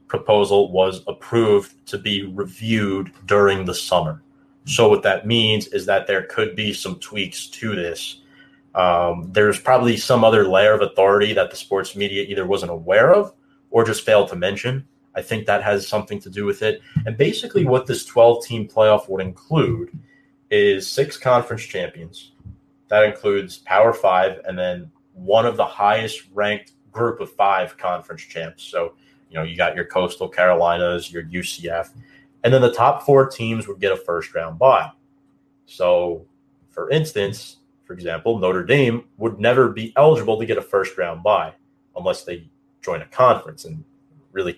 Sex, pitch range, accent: male, 95-140 Hz, American